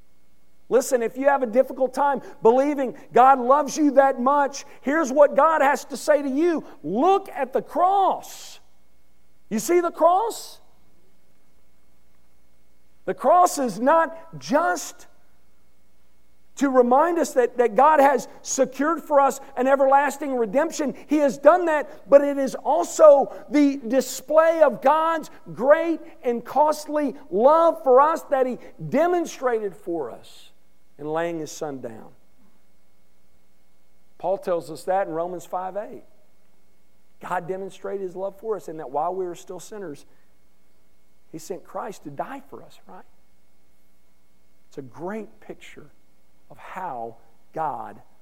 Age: 50-69